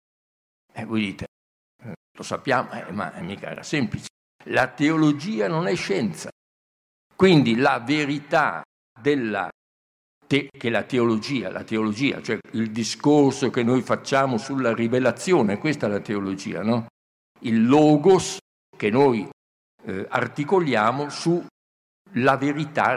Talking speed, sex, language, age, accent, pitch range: 120 wpm, male, Italian, 60-79, native, 110-160 Hz